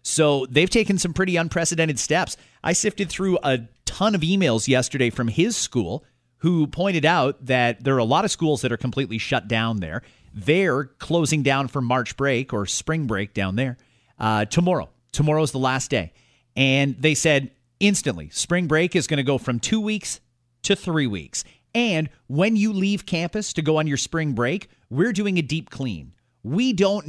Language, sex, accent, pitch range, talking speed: English, male, American, 125-180 Hz, 190 wpm